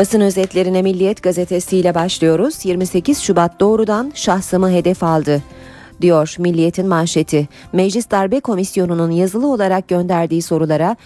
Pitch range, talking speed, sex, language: 155-205 Hz, 115 wpm, female, Turkish